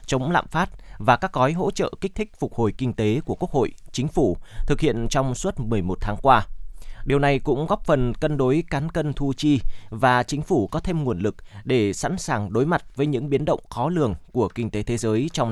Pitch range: 110-145 Hz